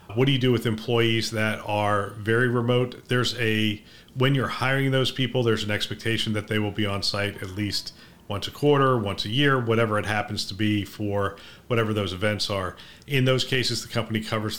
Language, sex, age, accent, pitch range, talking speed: English, male, 40-59, American, 105-120 Hz, 205 wpm